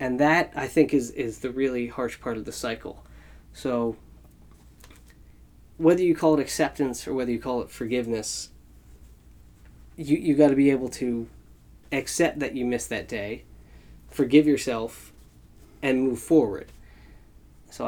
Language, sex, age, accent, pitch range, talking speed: English, male, 20-39, American, 115-140 Hz, 150 wpm